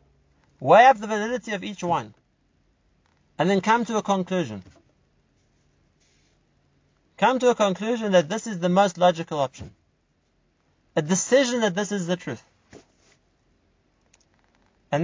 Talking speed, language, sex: 130 wpm, English, male